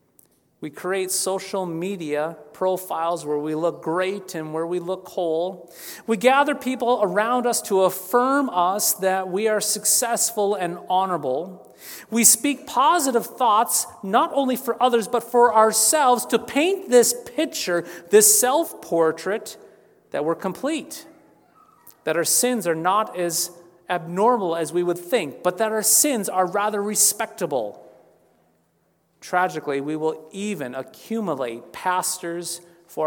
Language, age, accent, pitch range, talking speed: English, 40-59, American, 160-225 Hz, 130 wpm